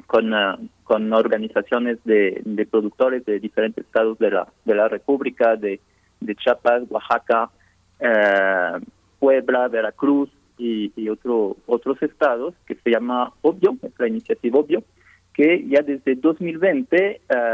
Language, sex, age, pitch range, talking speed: Spanish, male, 40-59, 110-145 Hz, 135 wpm